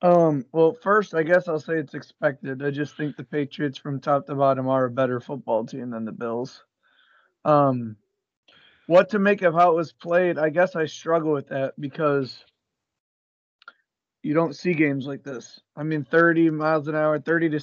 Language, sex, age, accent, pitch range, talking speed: English, male, 20-39, American, 140-165 Hz, 190 wpm